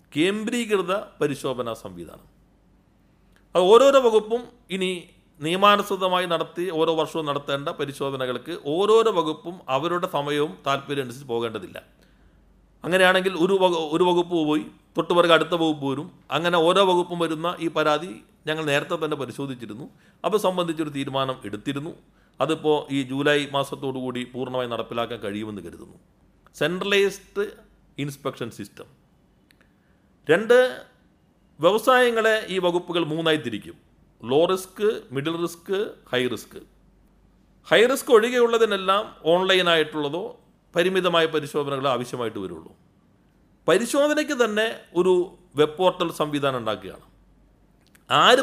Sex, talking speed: male, 100 wpm